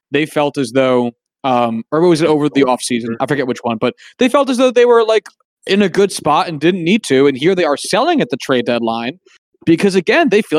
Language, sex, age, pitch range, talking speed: English, male, 20-39, 135-180 Hz, 250 wpm